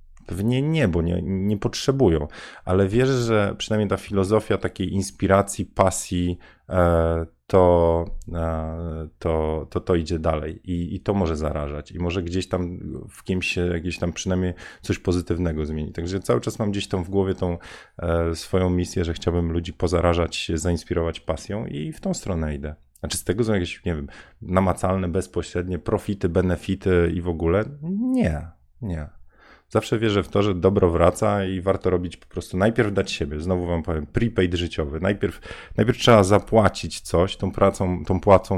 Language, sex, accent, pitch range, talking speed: Polish, male, native, 85-100 Hz, 170 wpm